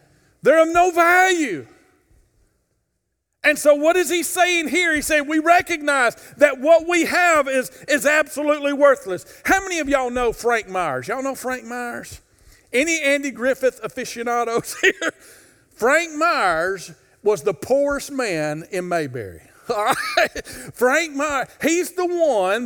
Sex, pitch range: male, 215-295 Hz